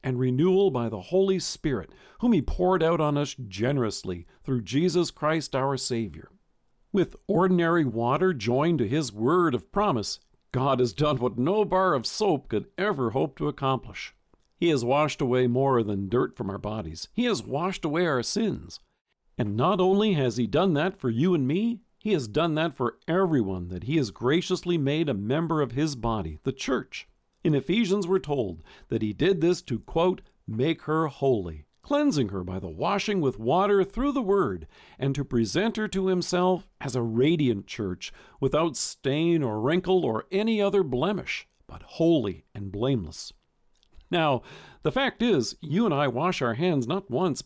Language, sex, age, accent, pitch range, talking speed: English, male, 50-69, American, 120-180 Hz, 180 wpm